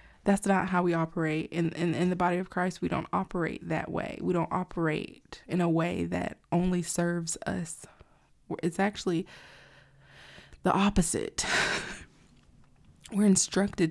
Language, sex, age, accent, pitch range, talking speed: English, female, 20-39, American, 170-195 Hz, 140 wpm